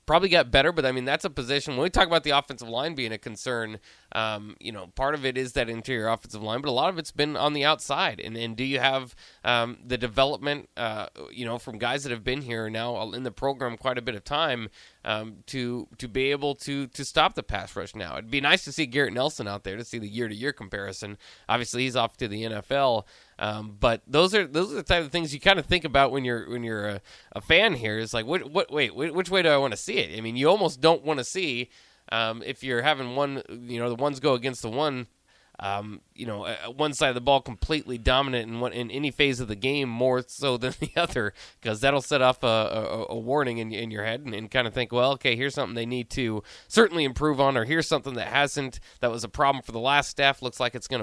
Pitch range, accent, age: 115-140 Hz, American, 20-39